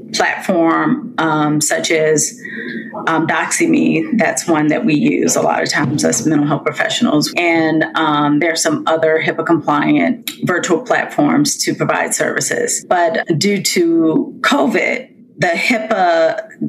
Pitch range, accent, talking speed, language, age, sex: 155-250 Hz, American, 135 wpm, English, 30-49, female